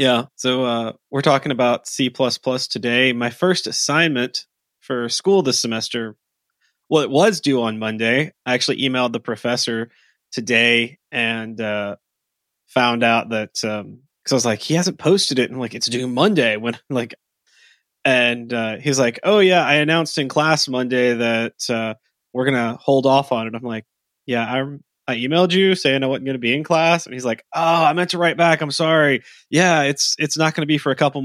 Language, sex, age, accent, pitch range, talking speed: English, male, 20-39, American, 120-150 Hz, 200 wpm